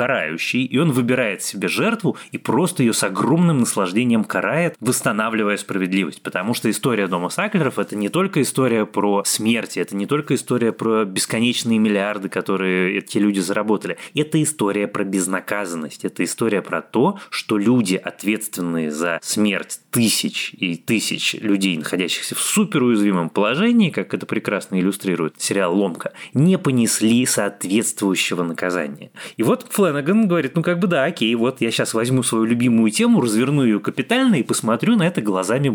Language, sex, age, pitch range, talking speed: Russian, male, 20-39, 100-140 Hz, 155 wpm